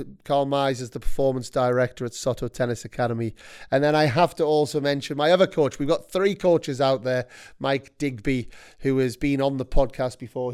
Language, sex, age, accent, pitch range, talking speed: English, male, 30-49, British, 130-150 Hz, 200 wpm